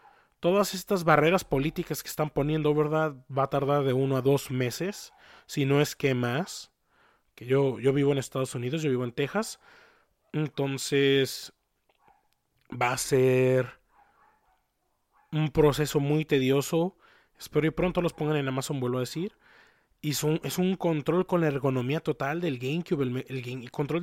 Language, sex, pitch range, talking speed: Spanish, male, 135-175 Hz, 155 wpm